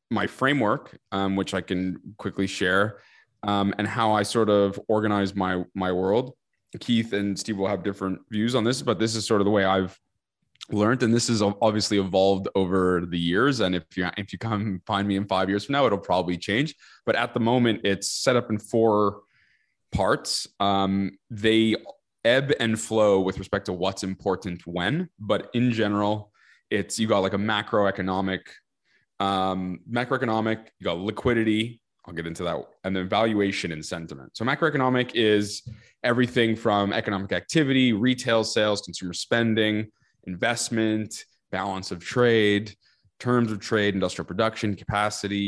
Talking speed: 165 wpm